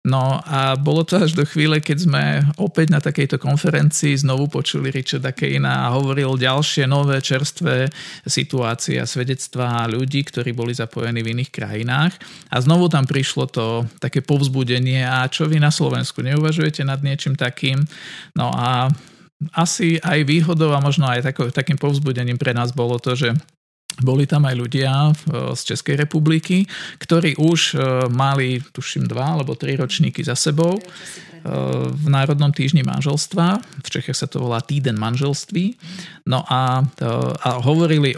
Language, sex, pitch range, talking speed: Slovak, male, 125-155 Hz, 150 wpm